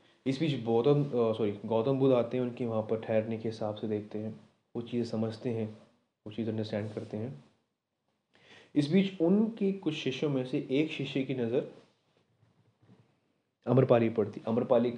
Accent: native